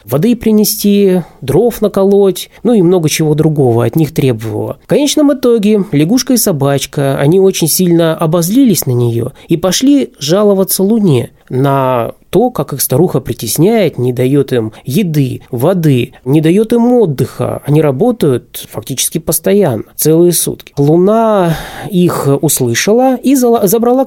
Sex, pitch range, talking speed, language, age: male, 135-205 Hz, 135 wpm, Russian, 20-39